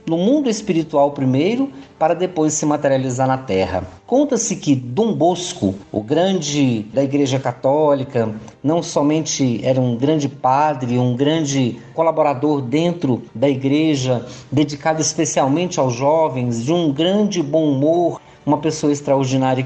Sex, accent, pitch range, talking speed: male, Brazilian, 130-180 Hz, 130 wpm